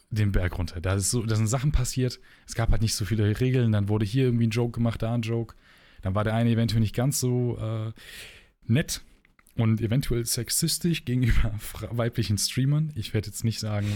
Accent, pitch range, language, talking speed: German, 100-120 Hz, German, 200 wpm